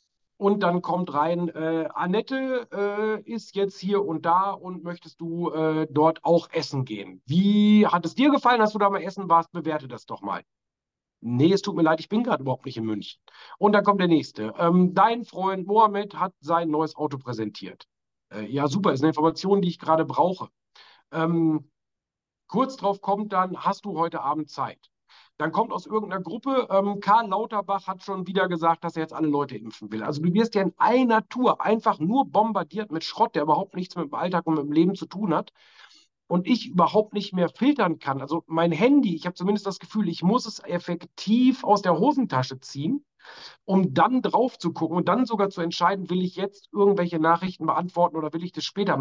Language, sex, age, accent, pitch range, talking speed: German, male, 50-69, German, 160-205 Hz, 210 wpm